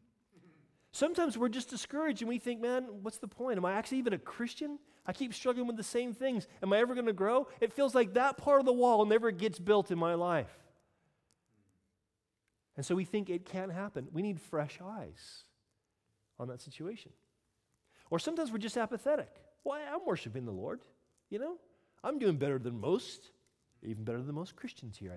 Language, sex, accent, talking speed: English, male, American, 195 wpm